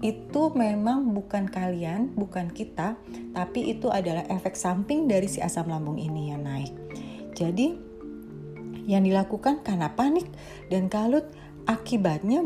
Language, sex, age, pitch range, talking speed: Indonesian, female, 30-49, 175-240 Hz, 125 wpm